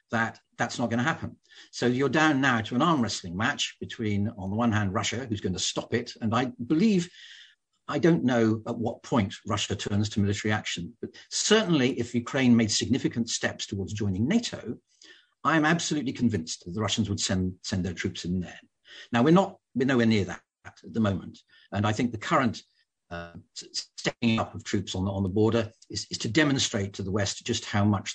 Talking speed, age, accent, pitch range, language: 210 wpm, 50-69, British, 105-135 Hz, English